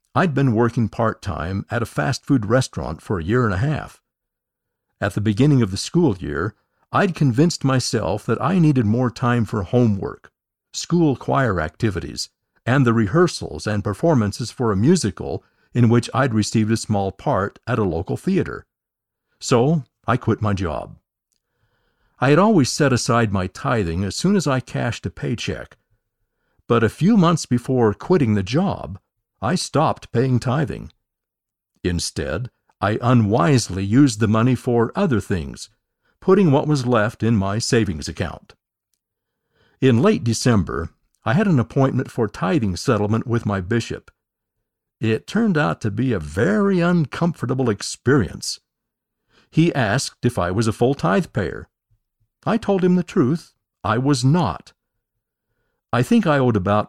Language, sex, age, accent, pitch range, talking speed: English, male, 50-69, American, 105-140 Hz, 155 wpm